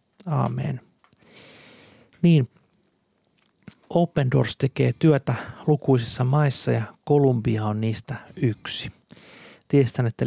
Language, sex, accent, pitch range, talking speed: Finnish, male, native, 120-160 Hz, 90 wpm